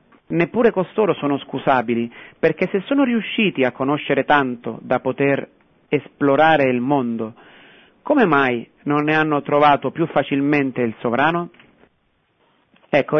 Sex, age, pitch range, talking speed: male, 40-59, 130-165 Hz, 125 wpm